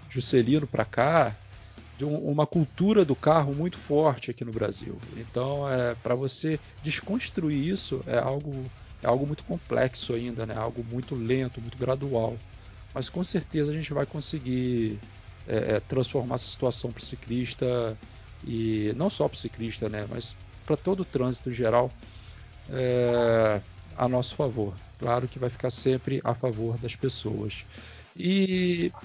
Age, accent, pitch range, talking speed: 40-59, Brazilian, 115-150 Hz, 150 wpm